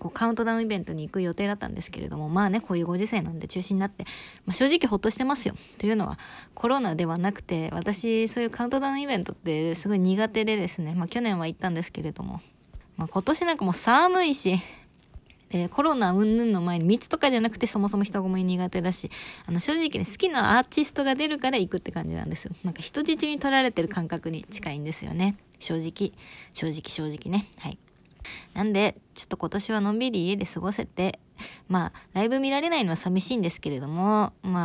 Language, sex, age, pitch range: Japanese, female, 20-39, 170-225 Hz